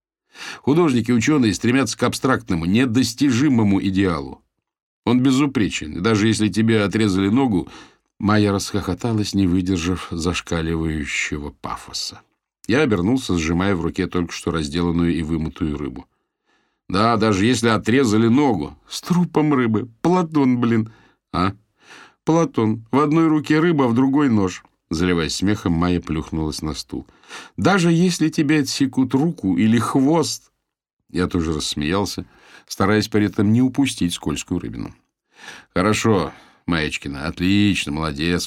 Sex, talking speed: male, 120 wpm